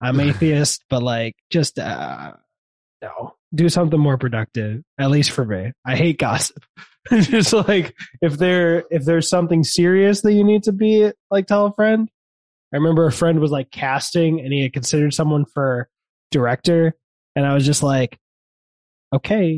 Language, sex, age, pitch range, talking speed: English, male, 20-39, 120-160 Hz, 170 wpm